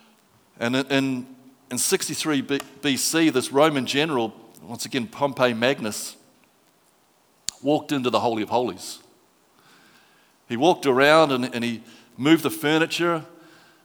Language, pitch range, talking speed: English, 115-150 Hz, 115 wpm